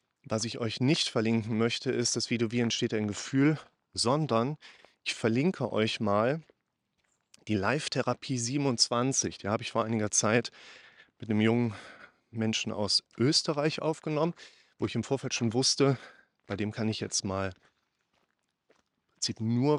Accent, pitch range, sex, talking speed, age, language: German, 110-125 Hz, male, 145 wpm, 30-49, German